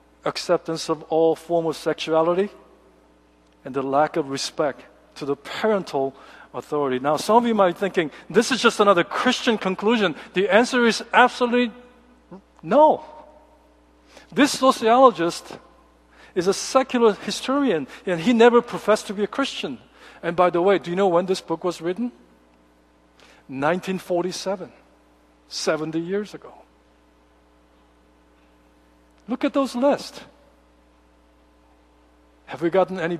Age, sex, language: 50-69, male, Korean